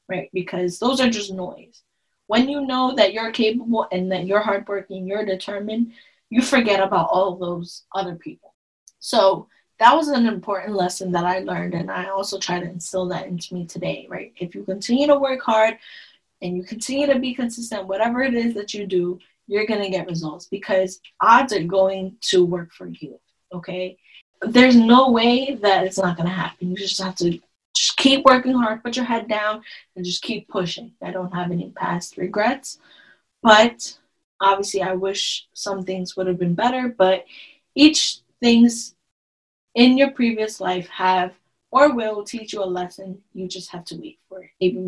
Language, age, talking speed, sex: English, 10-29, 190 wpm, female